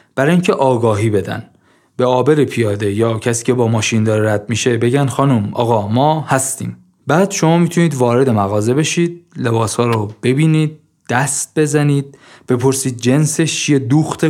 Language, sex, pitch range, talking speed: Persian, male, 110-145 Hz, 145 wpm